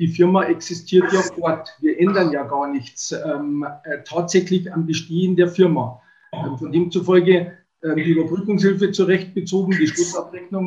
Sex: male